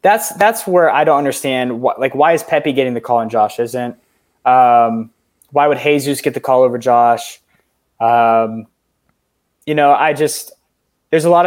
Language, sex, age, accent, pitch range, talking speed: English, male, 20-39, American, 120-165 Hz, 180 wpm